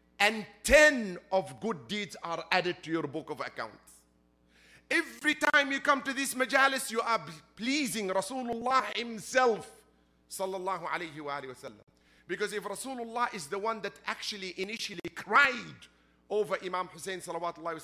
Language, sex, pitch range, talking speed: English, male, 190-260 Hz, 135 wpm